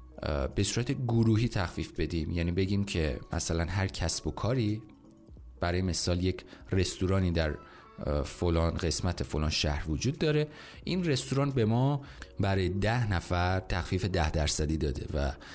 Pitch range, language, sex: 85-120 Hz, Persian, male